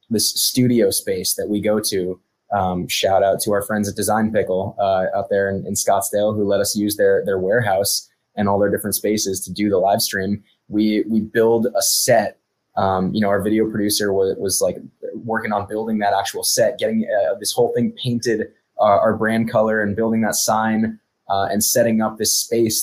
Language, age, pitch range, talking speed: English, 20-39, 100-115 Hz, 210 wpm